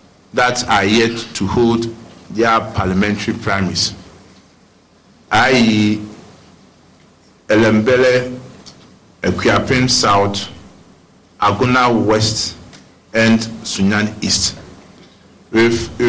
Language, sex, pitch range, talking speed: English, male, 100-120 Hz, 65 wpm